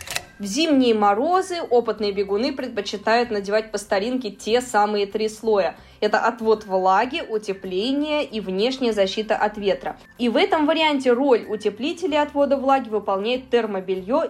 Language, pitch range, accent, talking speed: Russian, 210-275 Hz, native, 135 wpm